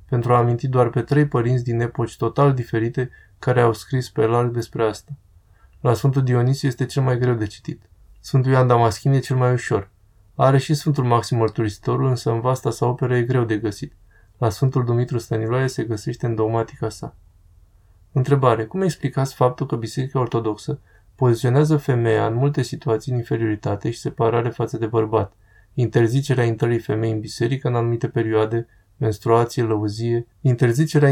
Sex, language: male, Romanian